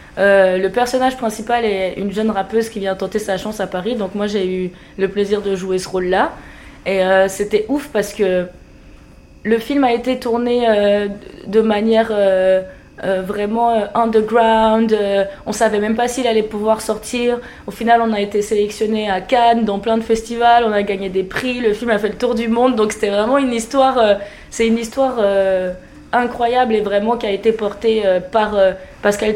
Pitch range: 190-225 Hz